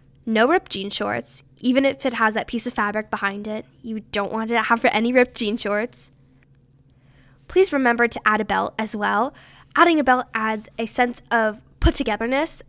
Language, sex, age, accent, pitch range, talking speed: English, female, 10-29, American, 210-265 Hz, 190 wpm